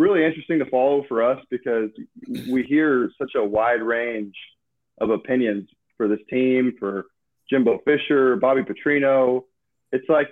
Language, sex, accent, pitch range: English, male, American, 115-135 Hz